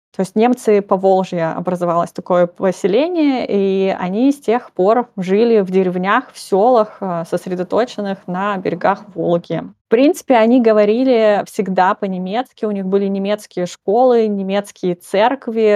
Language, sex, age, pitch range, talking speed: Russian, female, 20-39, 185-230 Hz, 135 wpm